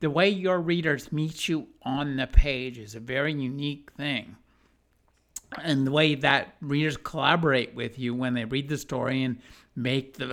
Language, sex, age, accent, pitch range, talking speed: English, male, 50-69, American, 130-160 Hz, 175 wpm